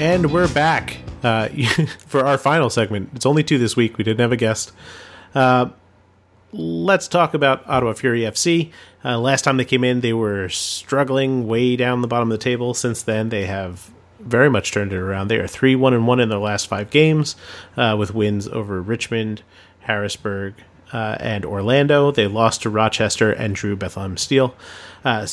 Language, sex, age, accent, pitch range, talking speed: English, male, 30-49, American, 105-130 Hz, 185 wpm